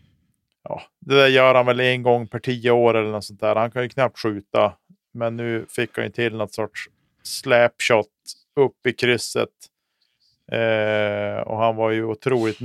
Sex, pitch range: male, 110-125 Hz